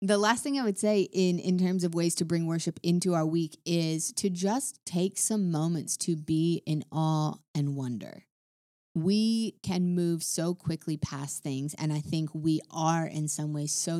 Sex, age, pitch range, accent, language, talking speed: female, 30-49, 150-180 Hz, American, English, 195 wpm